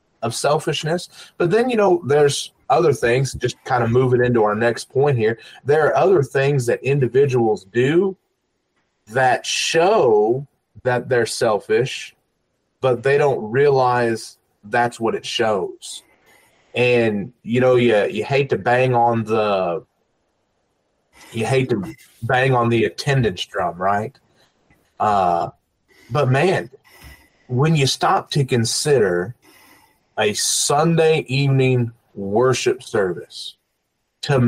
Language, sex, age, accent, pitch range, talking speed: English, male, 30-49, American, 120-145 Hz, 125 wpm